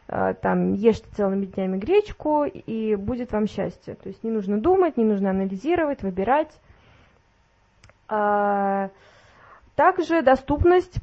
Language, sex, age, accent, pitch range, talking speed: Russian, female, 20-39, native, 190-250 Hz, 110 wpm